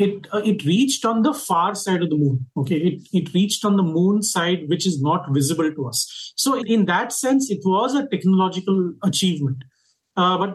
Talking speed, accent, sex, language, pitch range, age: 205 wpm, native, male, Hindi, 160-200 Hz, 30-49